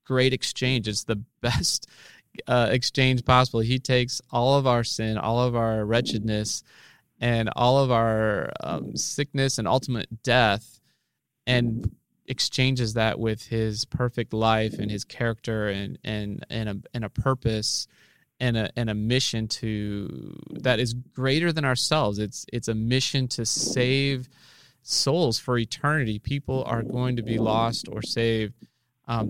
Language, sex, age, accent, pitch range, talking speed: English, male, 20-39, American, 110-130 Hz, 150 wpm